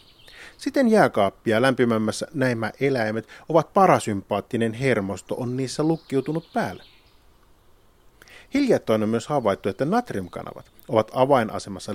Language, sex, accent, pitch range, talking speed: Finnish, male, native, 100-160 Hz, 100 wpm